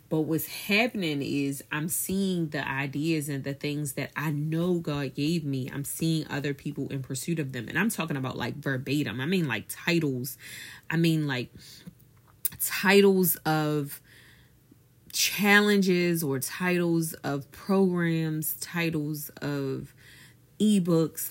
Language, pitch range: English, 135-165 Hz